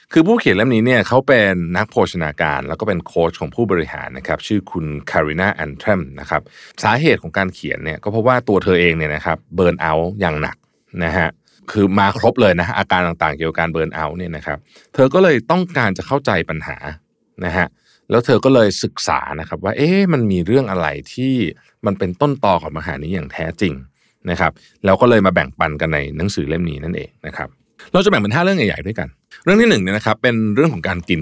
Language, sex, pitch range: Thai, male, 85-125 Hz